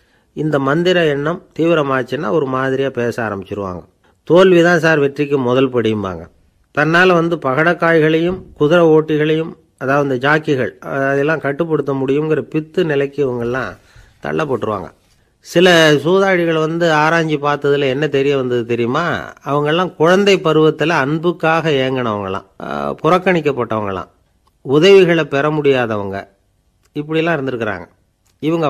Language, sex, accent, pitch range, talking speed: Tamil, male, native, 120-160 Hz, 105 wpm